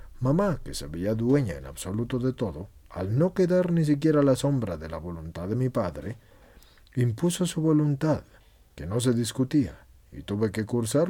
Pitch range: 85-130 Hz